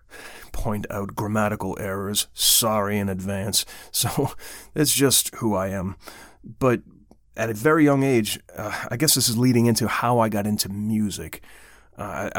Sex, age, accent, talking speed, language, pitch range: male, 30-49, American, 155 wpm, English, 100-115 Hz